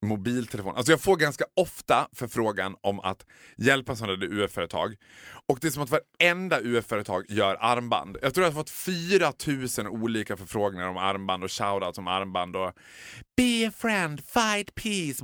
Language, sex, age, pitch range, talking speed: Swedish, male, 30-49, 115-170 Hz, 170 wpm